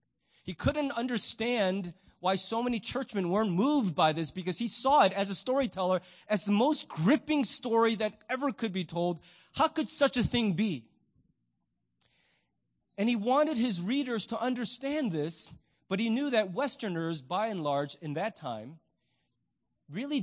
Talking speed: 160 wpm